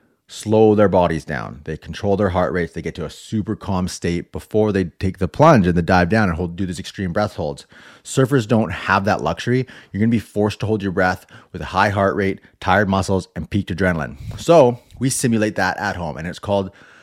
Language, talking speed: English, 225 wpm